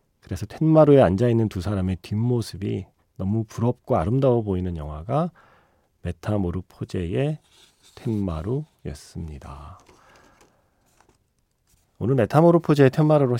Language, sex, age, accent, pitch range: Korean, male, 40-59, native, 95-130 Hz